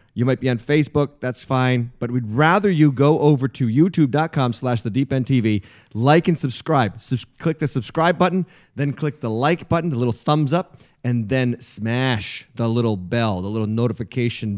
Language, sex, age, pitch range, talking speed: English, male, 30-49, 115-150 Hz, 175 wpm